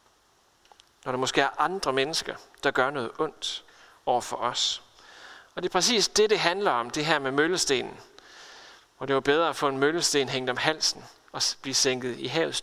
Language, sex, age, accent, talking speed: Danish, male, 30-49, native, 195 wpm